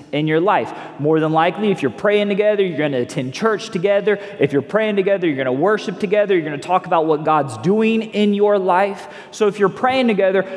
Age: 30-49